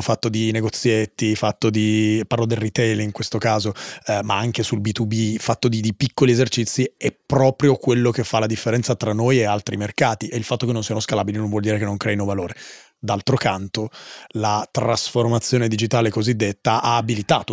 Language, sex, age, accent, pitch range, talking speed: Italian, male, 30-49, native, 110-130 Hz, 190 wpm